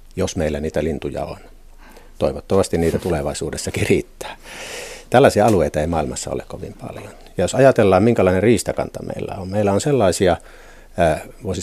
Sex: male